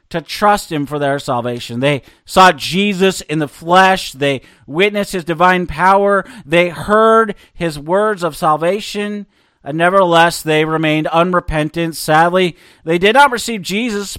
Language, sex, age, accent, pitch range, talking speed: English, male, 40-59, American, 155-205 Hz, 145 wpm